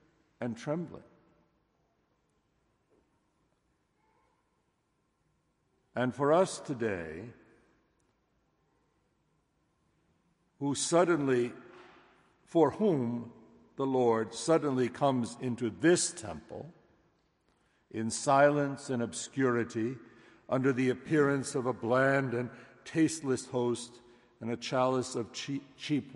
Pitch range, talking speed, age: 115-145 Hz, 80 wpm, 60-79